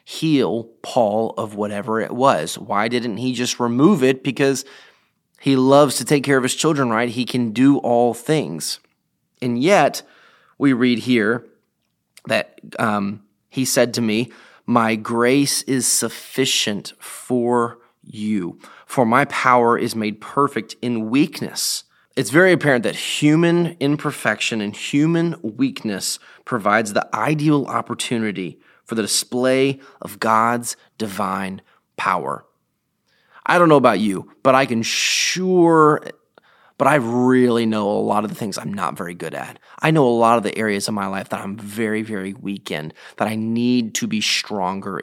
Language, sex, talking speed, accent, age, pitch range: English, male, 155 wpm, American, 30-49, 110-135 Hz